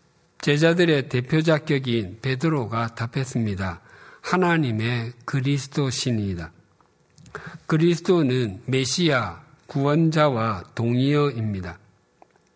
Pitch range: 115-155 Hz